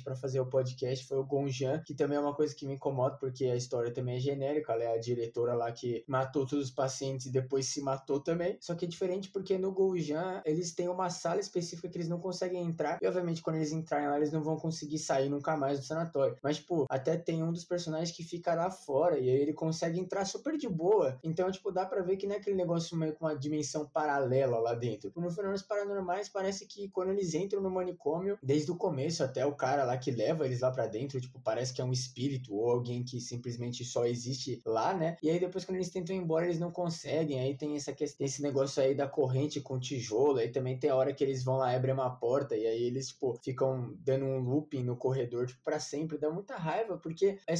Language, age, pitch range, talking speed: Portuguese, 20-39, 135-180 Hz, 245 wpm